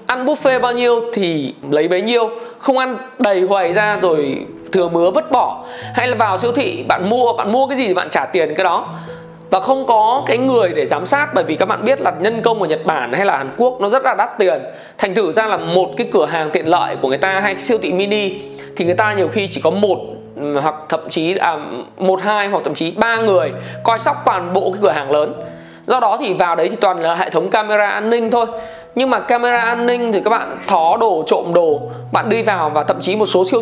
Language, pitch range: Vietnamese, 175-245 Hz